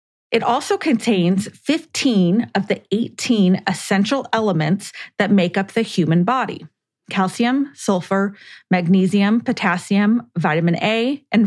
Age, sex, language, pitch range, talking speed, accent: 30-49, female, English, 185-240 Hz, 115 wpm, American